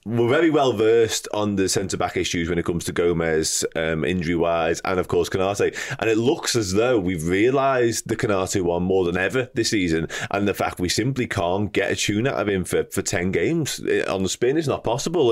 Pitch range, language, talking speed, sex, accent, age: 90-120 Hz, English, 225 wpm, male, British, 20-39